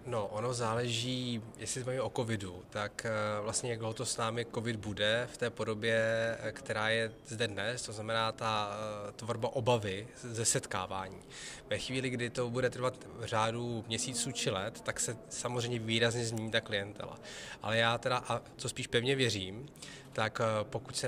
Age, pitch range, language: 20-39, 110-125 Hz, Czech